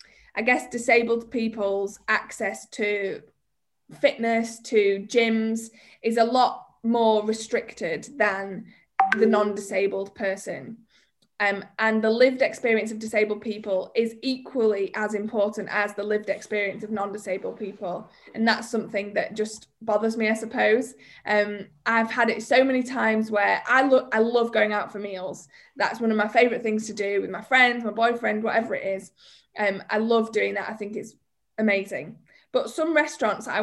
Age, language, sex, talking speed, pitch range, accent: 20-39, English, female, 160 wpm, 210-245 Hz, British